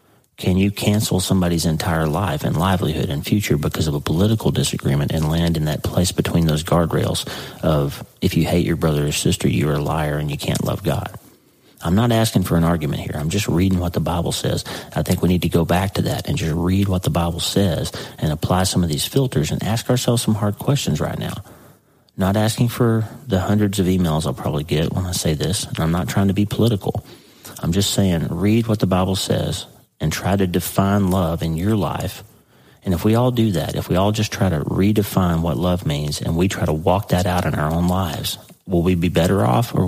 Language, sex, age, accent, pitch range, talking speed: English, male, 40-59, American, 85-105 Hz, 230 wpm